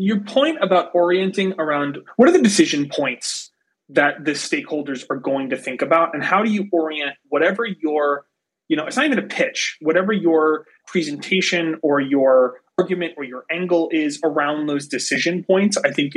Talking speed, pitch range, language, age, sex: 180 wpm, 145-190 Hz, English, 30-49, male